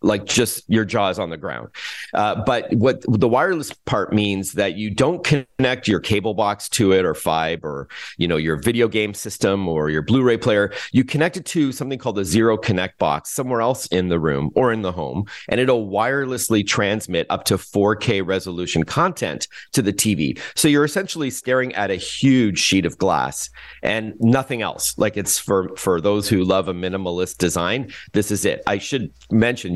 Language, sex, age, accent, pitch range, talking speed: English, male, 40-59, American, 90-125 Hz, 195 wpm